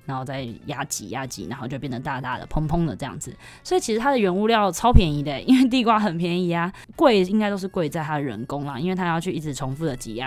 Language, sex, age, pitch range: Chinese, female, 20-39, 155-210 Hz